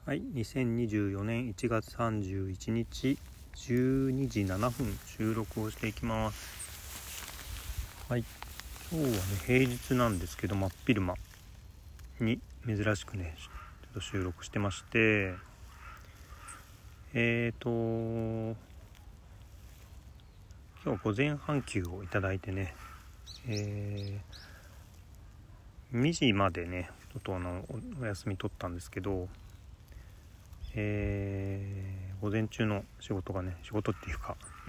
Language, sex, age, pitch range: Japanese, male, 40-59, 90-110 Hz